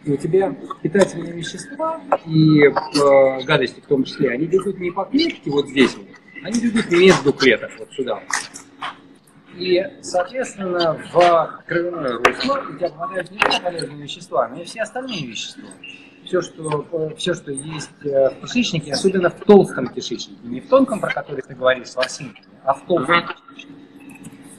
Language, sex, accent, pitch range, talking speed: Russian, male, native, 145-210 Hz, 155 wpm